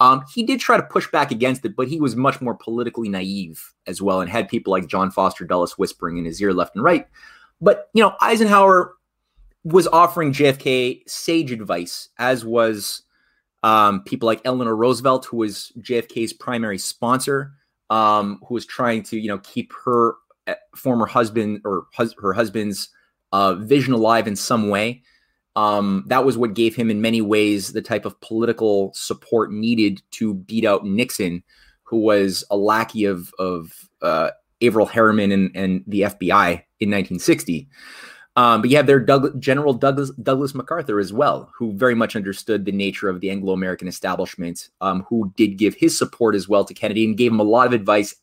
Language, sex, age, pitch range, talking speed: English, male, 20-39, 100-130 Hz, 185 wpm